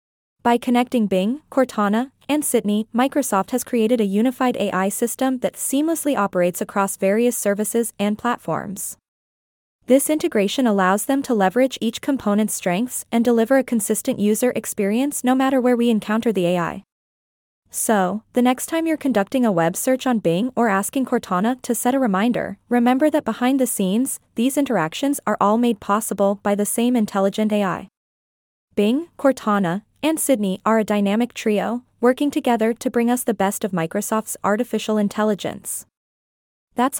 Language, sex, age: English, female, 20-39